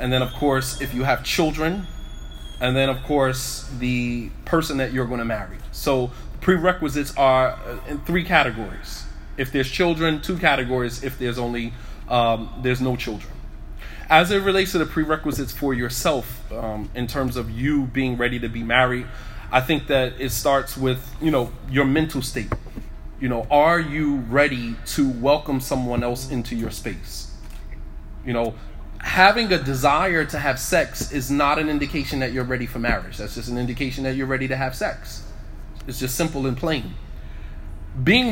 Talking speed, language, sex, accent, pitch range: 175 wpm, English, male, American, 120-150 Hz